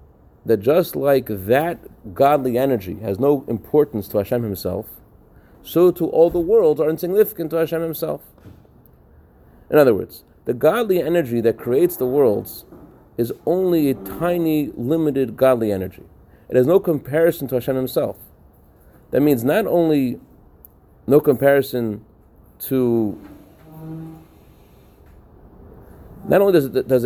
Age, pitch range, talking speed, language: 30-49, 110-155 Hz, 130 wpm, English